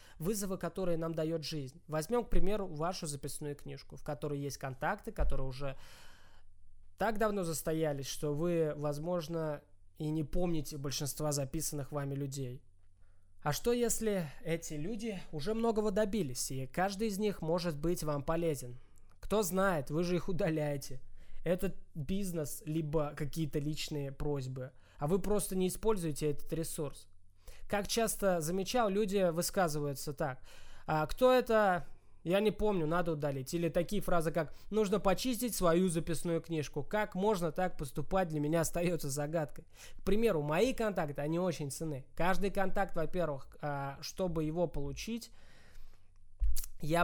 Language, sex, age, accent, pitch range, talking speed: Russian, male, 20-39, native, 145-185 Hz, 140 wpm